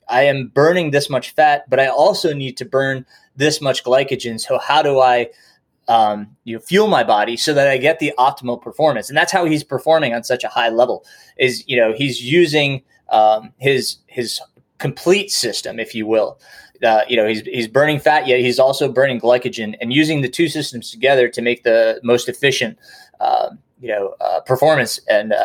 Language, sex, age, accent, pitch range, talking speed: English, male, 20-39, American, 120-155 Hz, 200 wpm